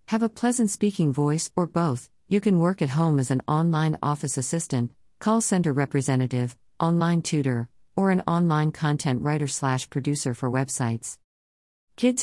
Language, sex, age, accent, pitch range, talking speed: English, female, 50-69, American, 125-165 Hz, 155 wpm